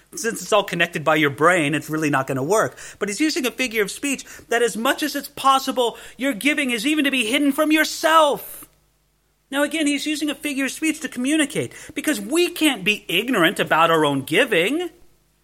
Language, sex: English, male